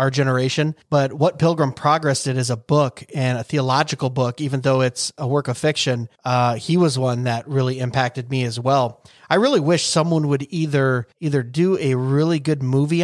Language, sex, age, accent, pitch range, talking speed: English, male, 30-49, American, 130-150 Hz, 200 wpm